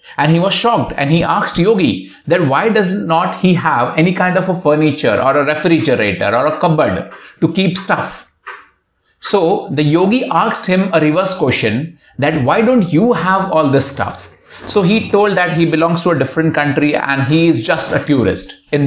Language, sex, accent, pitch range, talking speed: English, male, Indian, 145-195 Hz, 195 wpm